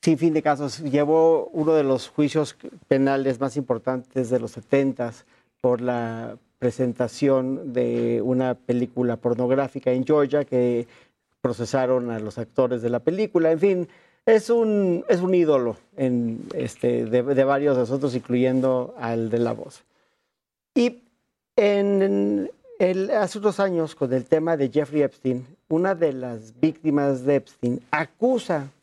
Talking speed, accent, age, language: 145 wpm, Mexican, 50-69, Spanish